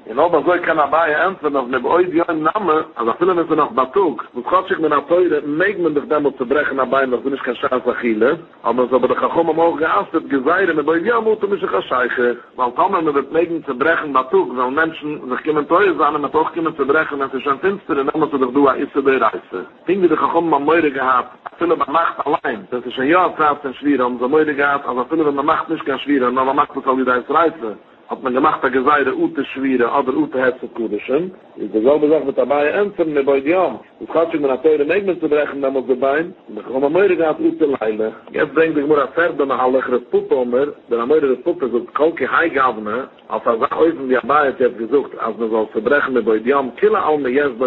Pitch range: 130-165 Hz